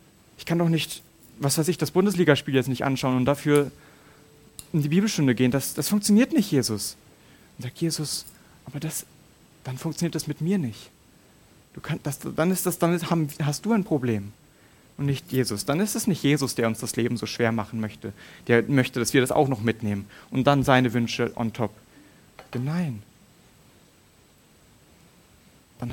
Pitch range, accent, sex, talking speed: 110-150 Hz, German, male, 180 wpm